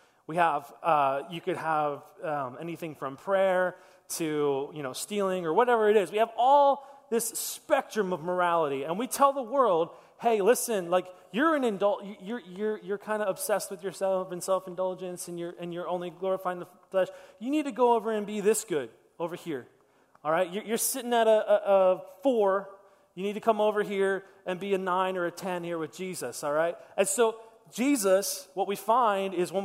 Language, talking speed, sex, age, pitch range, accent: English, 205 wpm, male, 30-49, 175-215 Hz, American